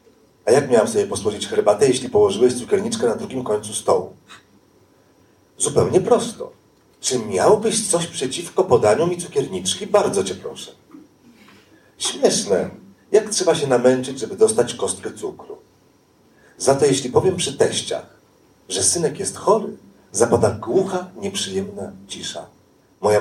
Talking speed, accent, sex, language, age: 125 wpm, native, male, Polish, 40-59